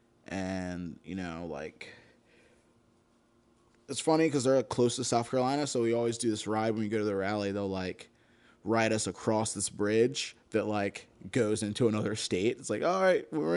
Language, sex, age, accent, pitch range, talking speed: English, male, 20-39, American, 105-120 Hz, 190 wpm